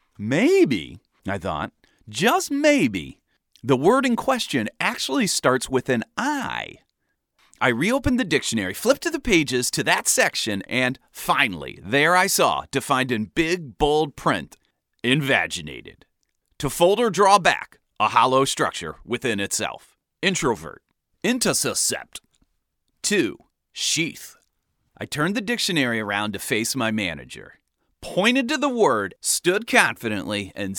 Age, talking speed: 40-59, 130 wpm